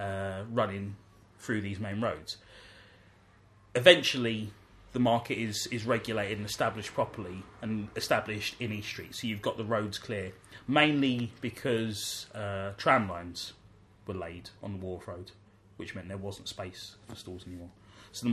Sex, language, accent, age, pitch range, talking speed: male, English, British, 20-39, 95-110 Hz, 155 wpm